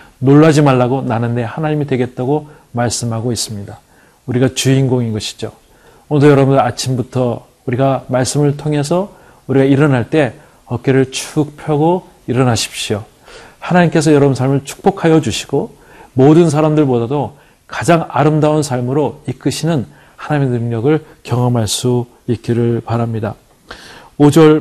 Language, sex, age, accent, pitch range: Korean, male, 40-59, native, 120-145 Hz